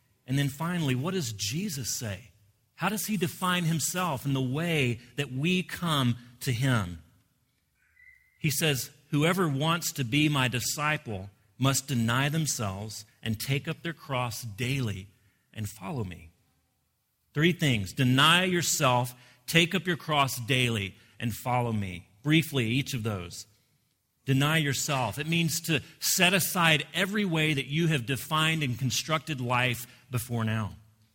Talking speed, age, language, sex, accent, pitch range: 145 wpm, 40-59, English, male, American, 115-150 Hz